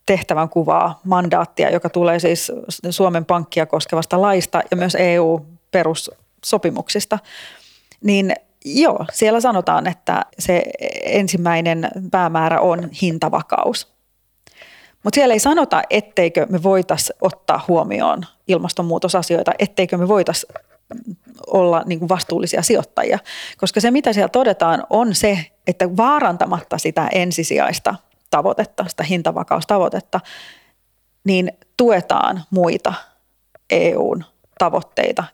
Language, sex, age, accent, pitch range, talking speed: Finnish, female, 30-49, native, 170-205 Hz, 100 wpm